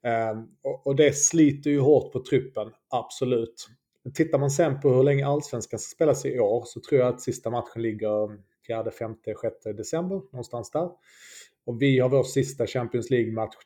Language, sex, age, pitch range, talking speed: Swedish, male, 30-49, 115-140 Hz, 185 wpm